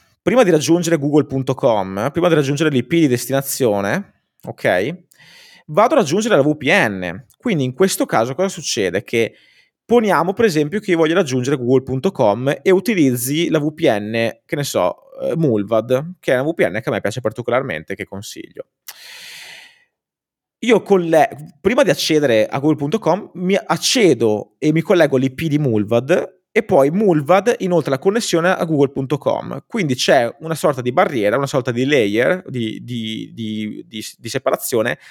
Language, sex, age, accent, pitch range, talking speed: Italian, male, 20-39, native, 120-180 Hz, 155 wpm